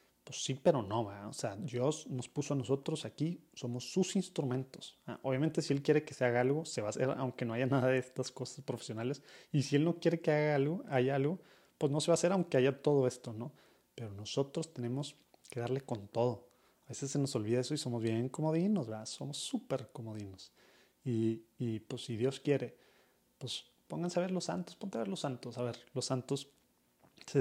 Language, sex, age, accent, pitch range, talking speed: Spanish, male, 30-49, Mexican, 115-145 Hz, 220 wpm